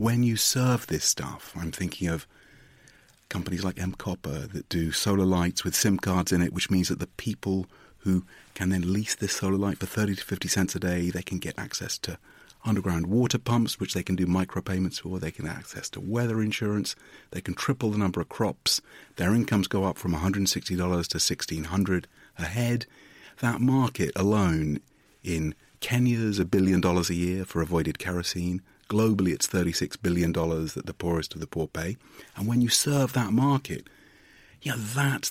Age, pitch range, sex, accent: 40-59, 90-110 Hz, male, British